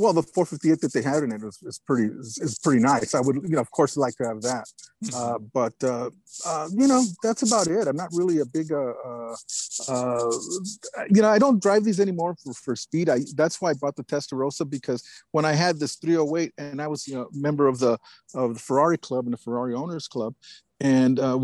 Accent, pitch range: American, 125-165 Hz